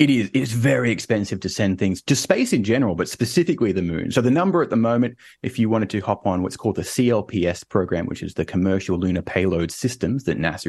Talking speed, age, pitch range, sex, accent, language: 235 wpm, 30-49, 90-115 Hz, male, Australian, English